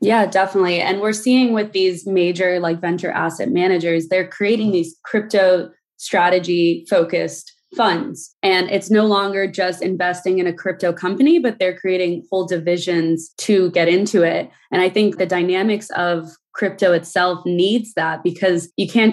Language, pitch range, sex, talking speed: English, 170-195 Hz, female, 160 wpm